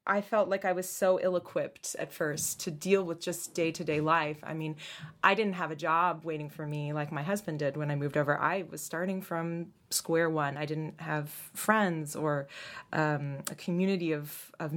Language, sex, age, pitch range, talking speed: English, female, 20-39, 160-200 Hz, 200 wpm